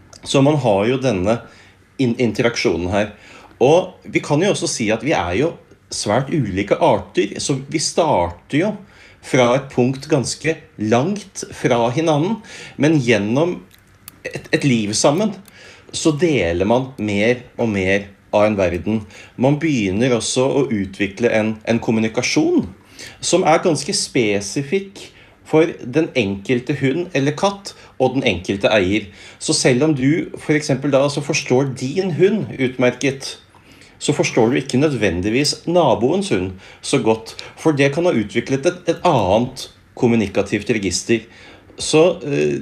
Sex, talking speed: male, 140 wpm